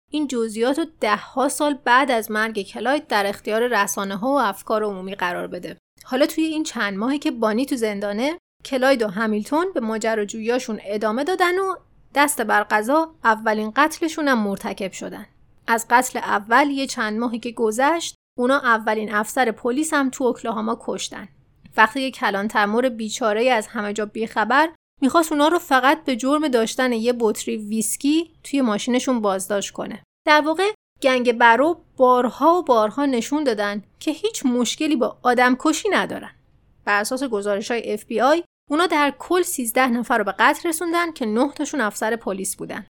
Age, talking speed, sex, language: 30-49, 165 wpm, female, Persian